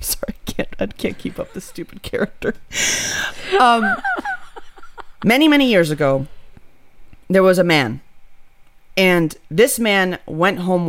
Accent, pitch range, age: American, 180-265 Hz, 30-49